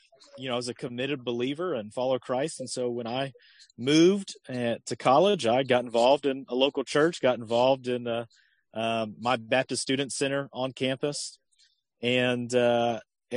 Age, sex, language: 40-59, male, English